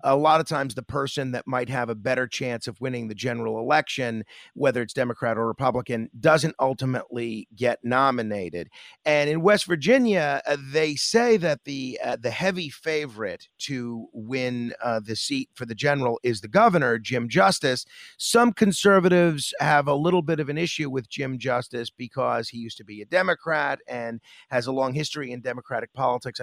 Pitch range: 125-165 Hz